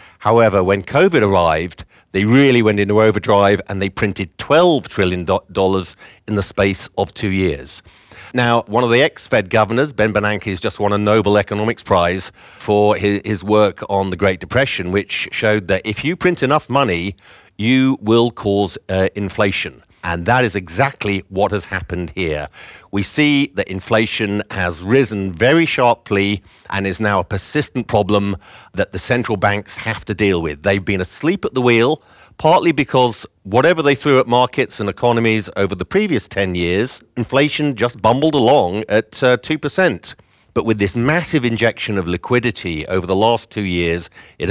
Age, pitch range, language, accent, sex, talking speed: 50-69, 95-120 Hz, English, British, male, 170 wpm